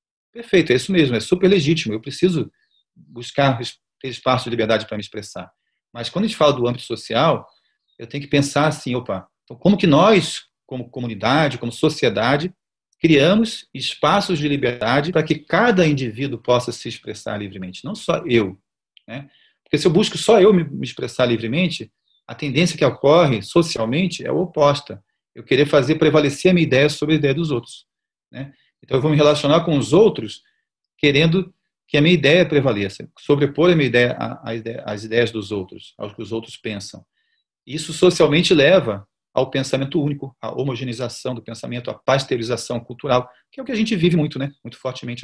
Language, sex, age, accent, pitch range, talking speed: Portuguese, male, 40-59, Brazilian, 120-165 Hz, 185 wpm